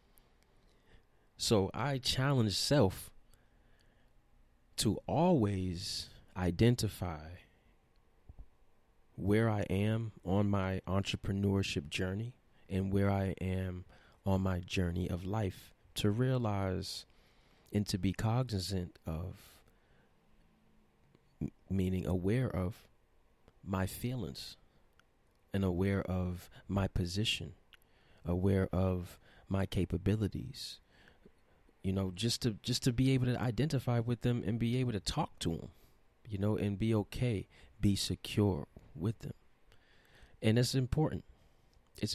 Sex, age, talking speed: male, 30-49, 110 wpm